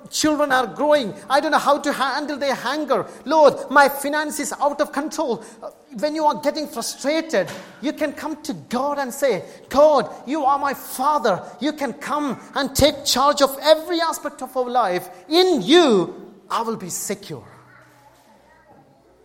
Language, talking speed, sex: English, 165 wpm, male